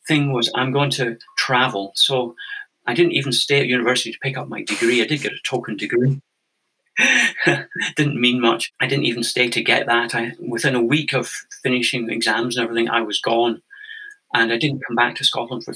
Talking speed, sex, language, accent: 205 wpm, male, English, British